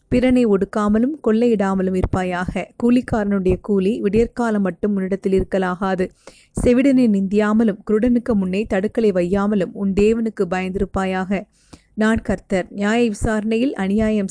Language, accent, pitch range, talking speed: Tamil, native, 195-225 Hz, 105 wpm